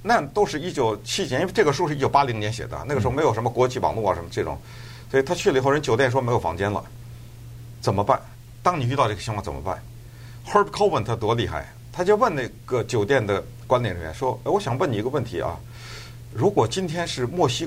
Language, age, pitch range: Chinese, 50-69, 115-140 Hz